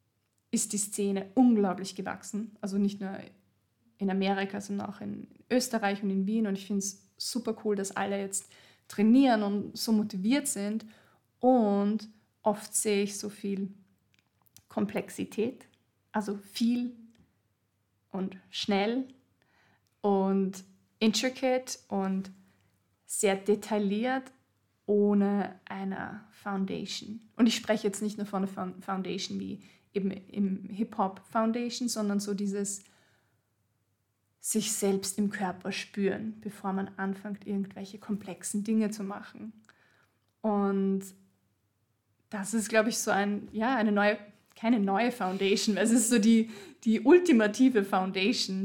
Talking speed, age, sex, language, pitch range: 120 wpm, 20-39, female, English, 195-220 Hz